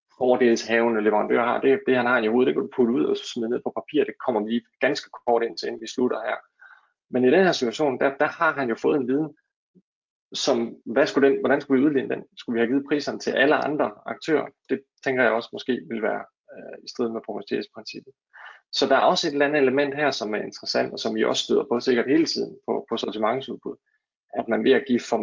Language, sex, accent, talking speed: Danish, male, native, 245 wpm